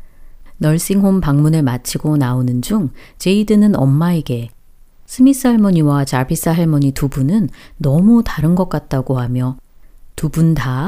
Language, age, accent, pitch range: Korean, 40-59, native, 135-195 Hz